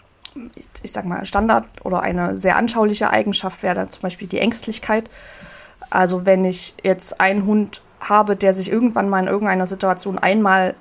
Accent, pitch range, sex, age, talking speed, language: German, 185-210 Hz, female, 20-39, 165 wpm, German